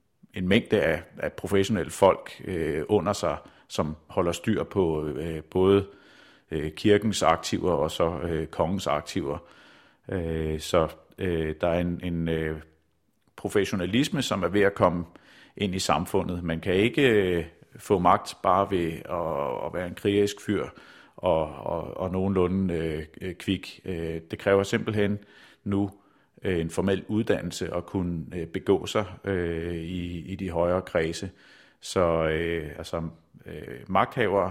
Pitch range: 80-95 Hz